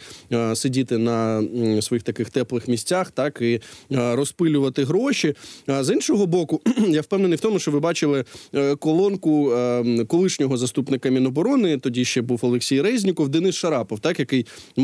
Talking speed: 140 wpm